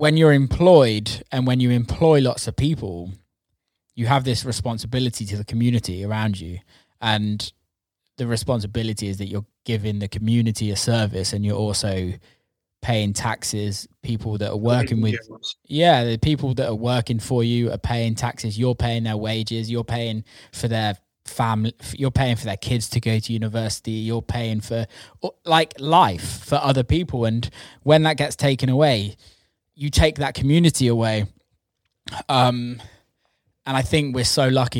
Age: 20-39